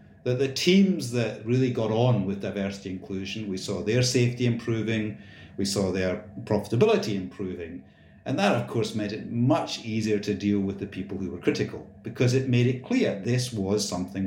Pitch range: 100-120 Hz